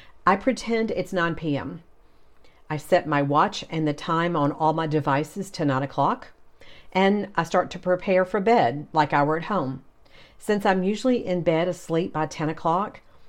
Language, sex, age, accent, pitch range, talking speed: English, female, 50-69, American, 145-185 Hz, 180 wpm